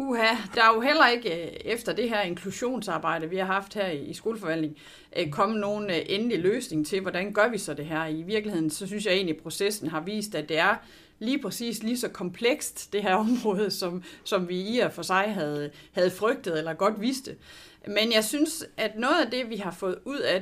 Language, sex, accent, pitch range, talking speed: Danish, female, native, 180-240 Hz, 210 wpm